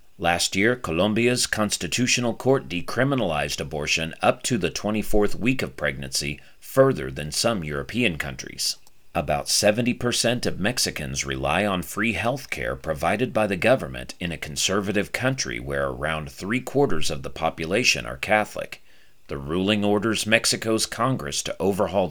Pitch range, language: 75-110 Hz, English